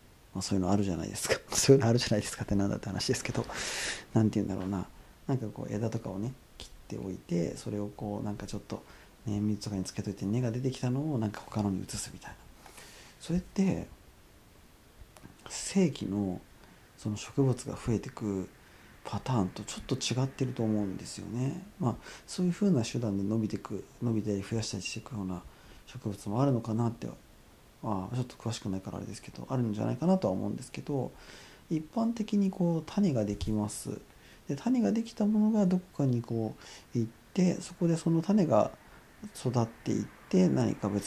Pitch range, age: 100-135 Hz, 40-59